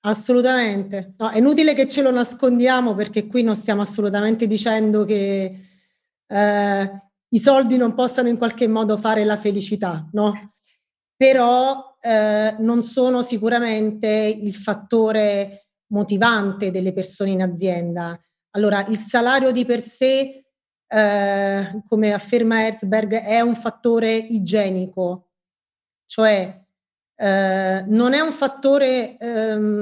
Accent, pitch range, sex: native, 200-240 Hz, female